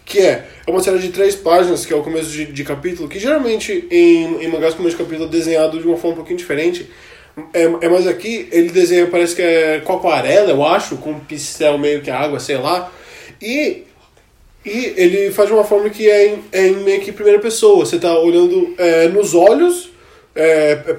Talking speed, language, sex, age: 215 wpm, Portuguese, male, 20-39